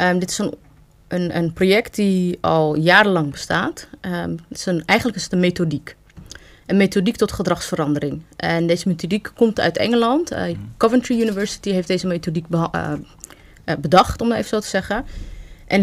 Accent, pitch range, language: Dutch, 165-200 Hz, Dutch